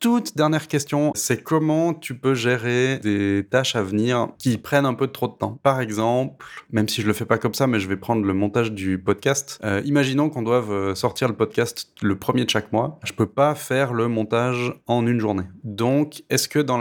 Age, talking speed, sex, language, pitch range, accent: 20-39, 220 wpm, male, French, 110-135 Hz, French